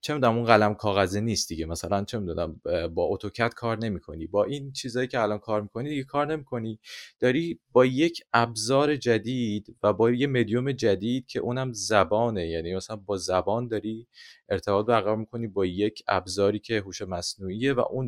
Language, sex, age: Persian, male, 30-49